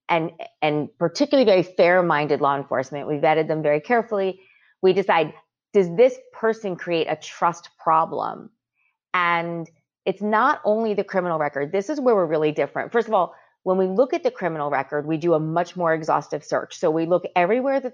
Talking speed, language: 185 wpm, English